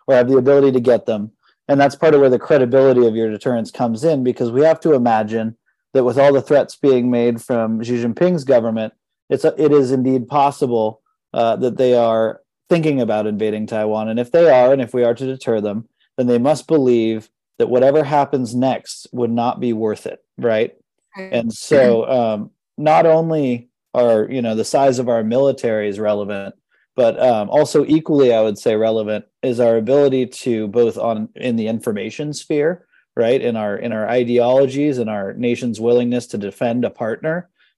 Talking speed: 190 wpm